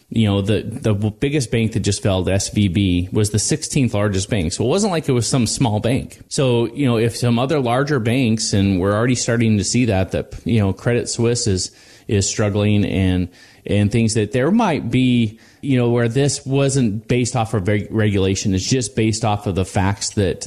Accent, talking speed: American, 210 wpm